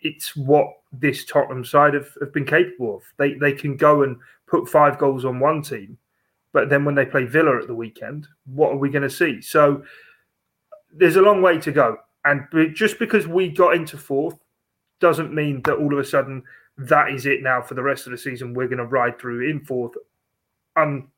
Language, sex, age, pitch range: English, male, 30-49, 130-150 Hz